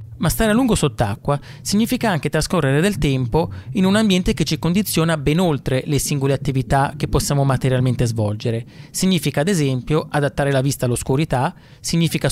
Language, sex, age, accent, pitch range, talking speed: Italian, male, 30-49, native, 130-165 Hz, 160 wpm